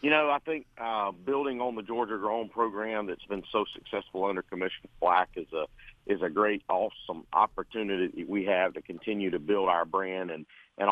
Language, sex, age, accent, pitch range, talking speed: English, male, 50-69, American, 100-125 Hz, 190 wpm